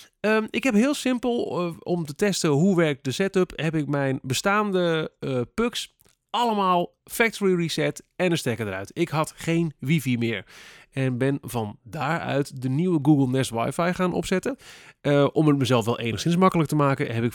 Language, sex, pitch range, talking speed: Dutch, male, 120-165 Hz, 185 wpm